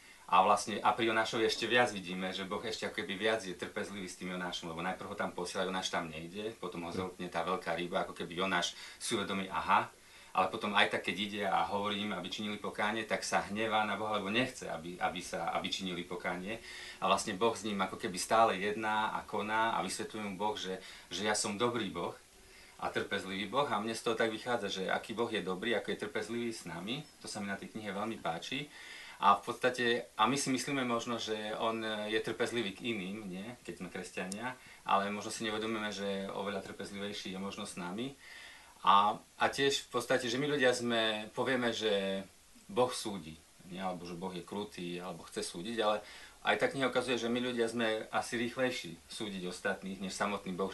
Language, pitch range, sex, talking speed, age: Slovak, 95-115 Hz, male, 210 wpm, 40-59